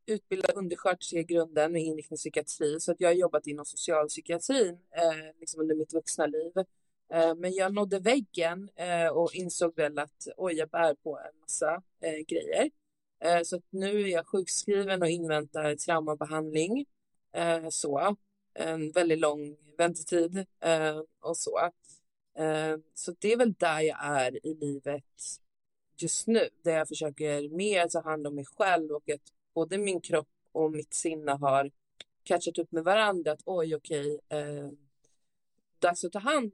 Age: 30-49